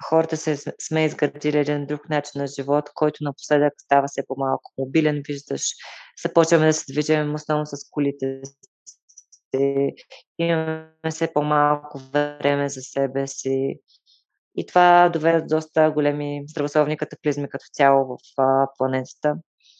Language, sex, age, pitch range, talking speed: Bulgarian, female, 20-39, 140-160 Hz, 125 wpm